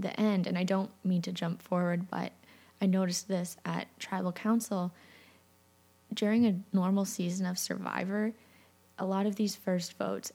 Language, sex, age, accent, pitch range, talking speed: English, female, 20-39, American, 170-200 Hz, 160 wpm